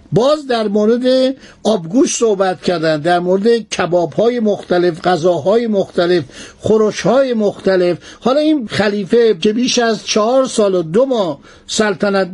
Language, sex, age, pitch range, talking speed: Persian, male, 60-79, 190-240 Hz, 130 wpm